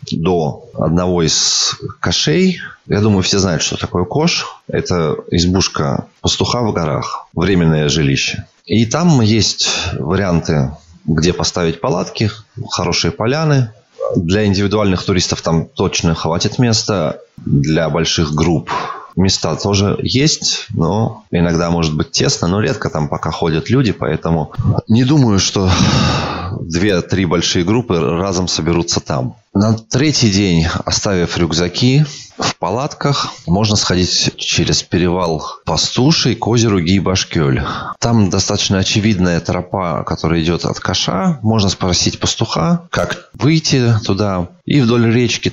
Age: 20-39